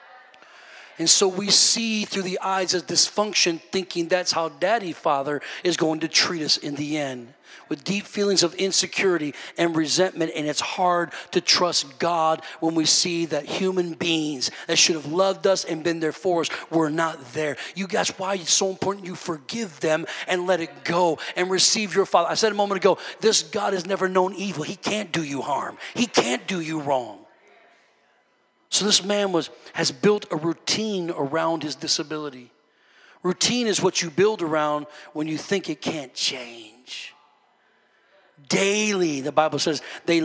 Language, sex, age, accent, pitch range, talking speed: English, male, 40-59, American, 160-195 Hz, 180 wpm